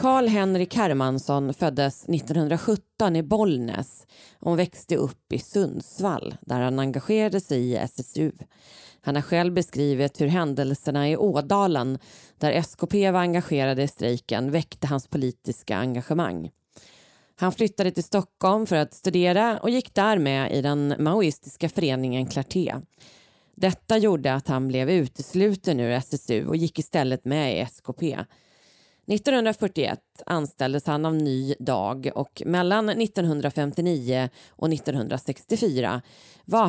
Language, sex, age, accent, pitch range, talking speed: Swedish, female, 30-49, native, 135-185 Hz, 125 wpm